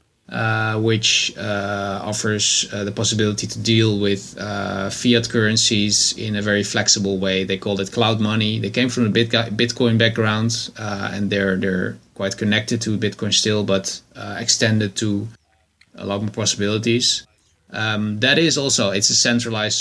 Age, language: 20-39, English